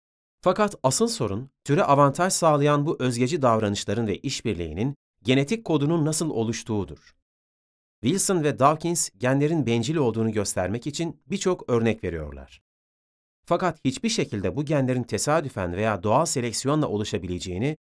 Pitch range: 105-150 Hz